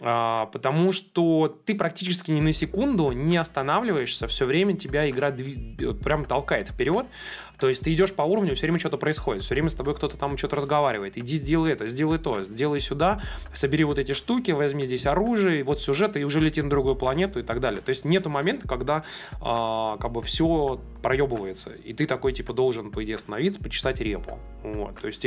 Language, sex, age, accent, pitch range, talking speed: Russian, male, 20-39, native, 125-165 Hz, 200 wpm